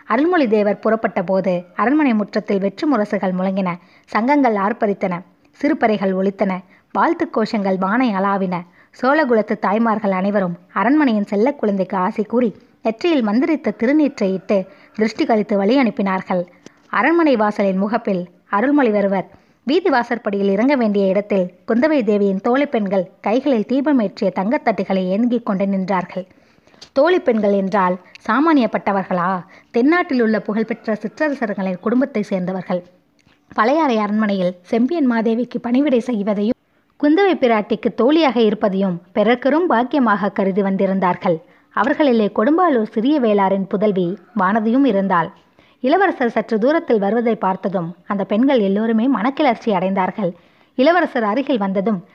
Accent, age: native, 20-39